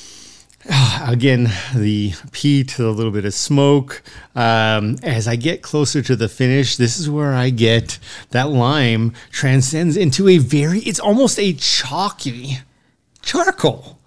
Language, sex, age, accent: English, male, 30-49, American